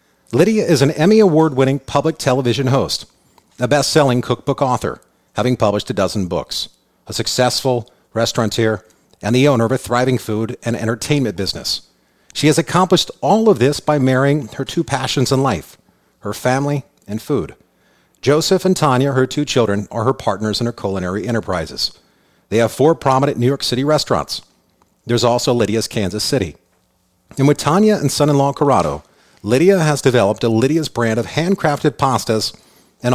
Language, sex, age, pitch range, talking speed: English, male, 40-59, 110-140 Hz, 160 wpm